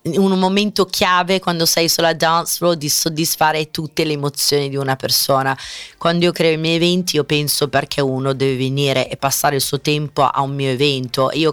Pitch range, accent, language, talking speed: 140-175 Hz, native, Italian, 200 wpm